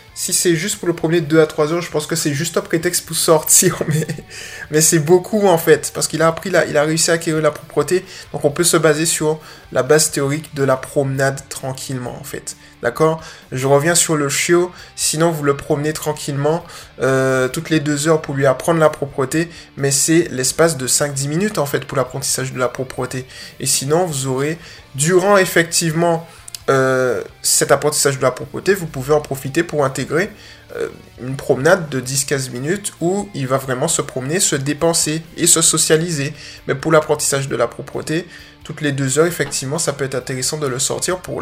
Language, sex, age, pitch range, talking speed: French, male, 20-39, 135-170 Hz, 205 wpm